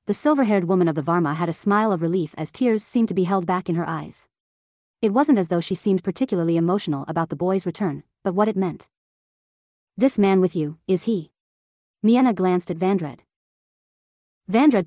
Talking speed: 195 wpm